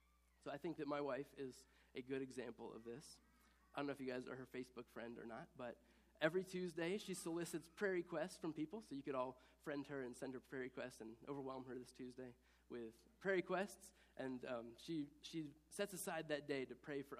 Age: 20-39